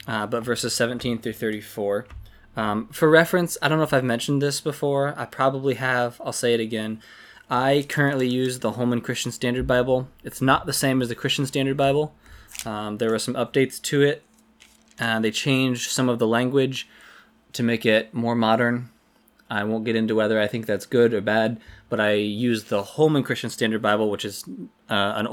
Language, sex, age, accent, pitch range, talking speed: English, male, 20-39, American, 105-125 Hz, 195 wpm